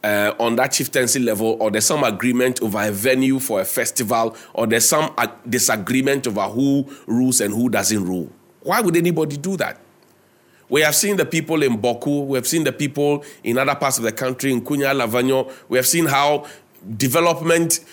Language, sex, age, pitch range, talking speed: English, male, 30-49, 125-160 Hz, 195 wpm